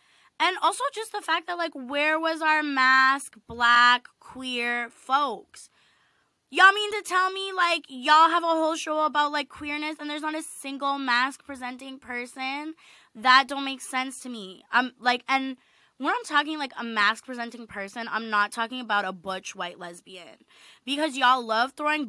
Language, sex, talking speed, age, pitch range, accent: English, female, 170 wpm, 20-39, 230-295 Hz, American